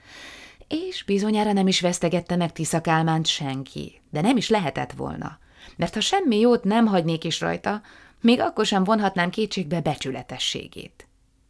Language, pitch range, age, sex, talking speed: Hungarian, 155-210 Hz, 20-39, female, 145 wpm